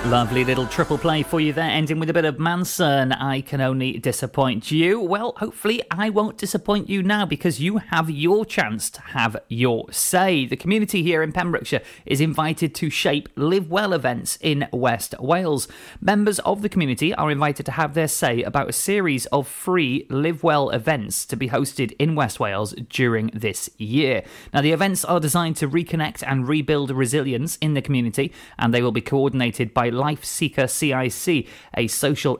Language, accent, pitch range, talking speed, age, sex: English, British, 125-165 Hz, 185 wpm, 30-49, male